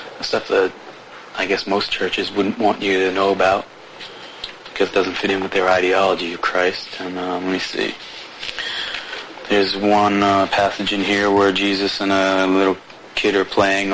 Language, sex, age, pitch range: English, male, 30-49, 95-100 Hz